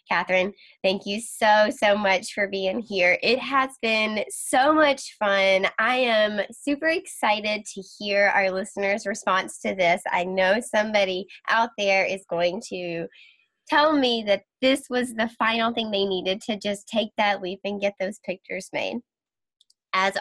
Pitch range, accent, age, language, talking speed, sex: 195-260 Hz, American, 10-29, English, 165 wpm, female